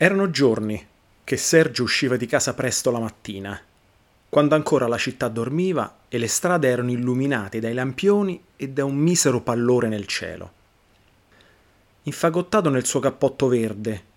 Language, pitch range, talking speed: Italian, 105-150 Hz, 145 wpm